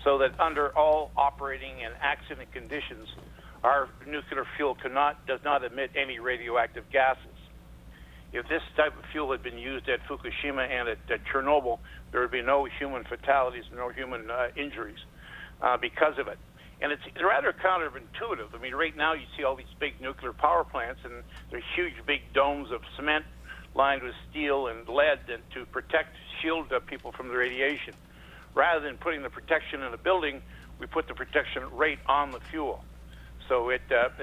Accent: American